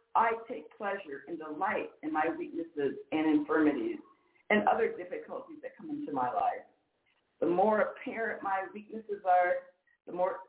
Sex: female